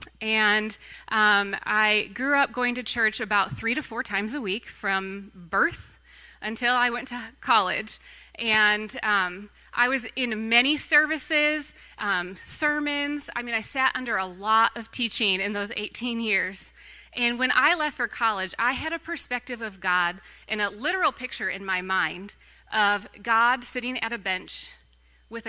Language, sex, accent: English, female, American